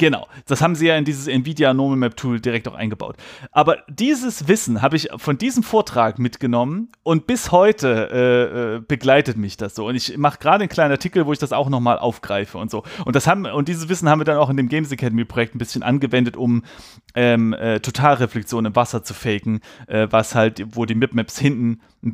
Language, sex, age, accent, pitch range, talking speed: German, male, 30-49, German, 120-160 Hz, 205 wpm